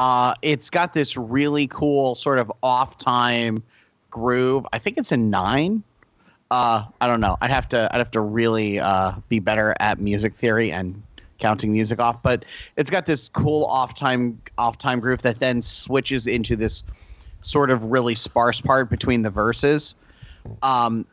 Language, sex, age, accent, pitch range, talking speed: English, male, 30-49, American, 110-135 Hz, 165 wpm